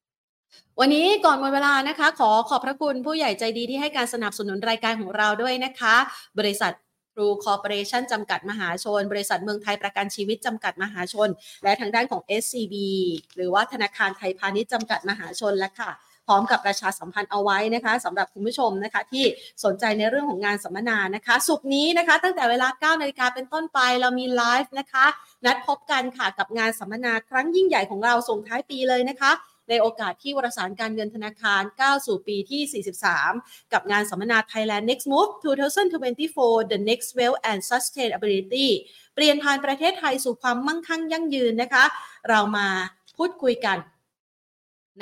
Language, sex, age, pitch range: Thai, female, 30-49, 200-255 Hz